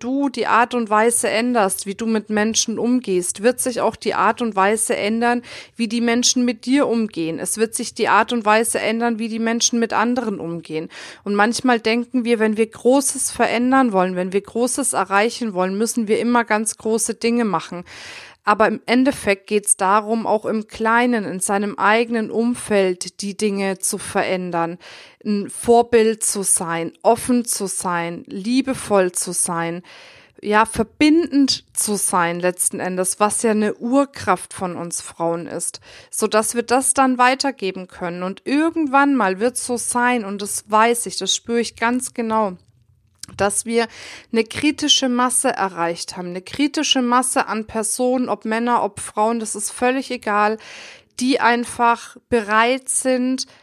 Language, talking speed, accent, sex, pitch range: German, 160 wpm, German, female, 200-245 Hz